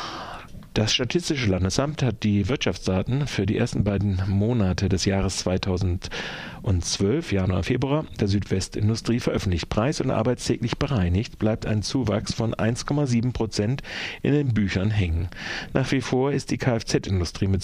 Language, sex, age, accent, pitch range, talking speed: German, male, 40-59, German, 95-130 Hz, 135 wpm